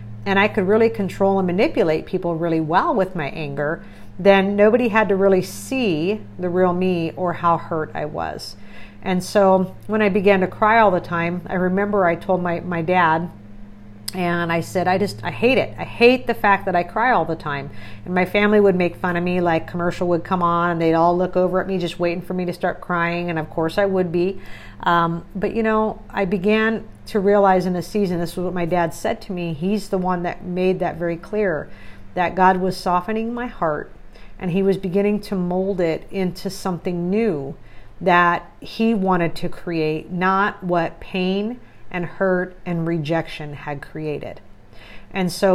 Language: English